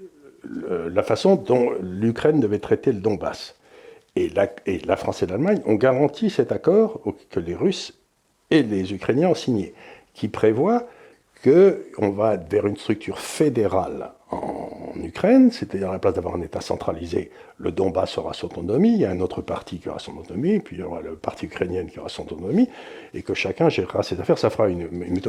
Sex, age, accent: male, 60-79, French